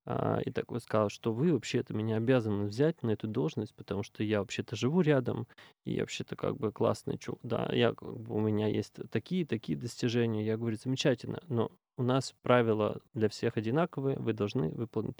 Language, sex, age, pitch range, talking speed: Russian, male, 20-39, 110-130 Hz, 200 wpm